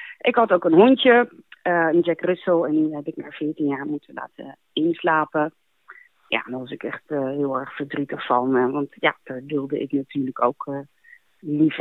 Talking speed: 195 wpm